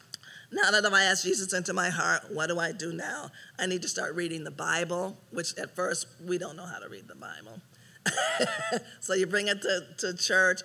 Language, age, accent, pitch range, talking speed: English, 40-59, American, 175-205 Hz, 215 wpm